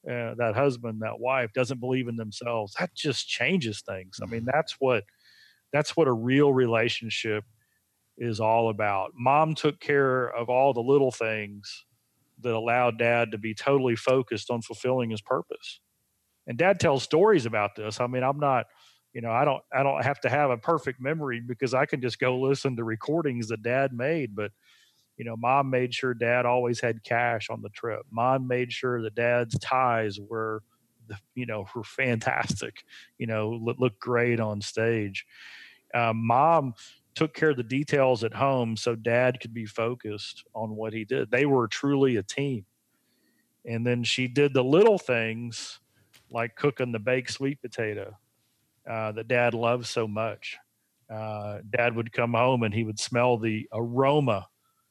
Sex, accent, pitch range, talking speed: male, American, 110-130 Hz, 175 wpm